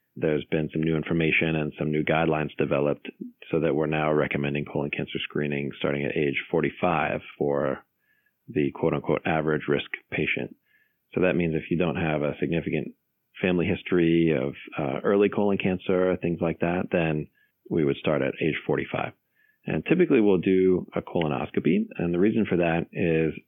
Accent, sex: American, male